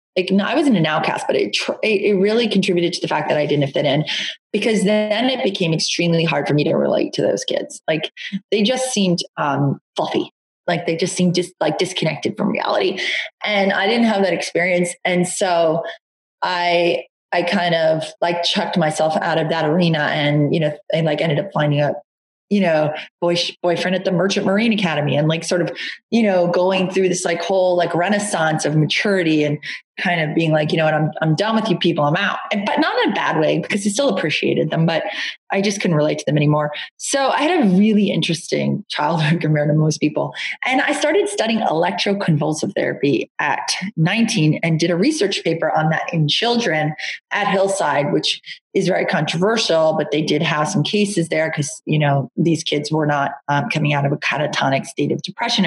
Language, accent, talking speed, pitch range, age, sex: English, American, 210 wpm, 155-200 Hz, 30-49, female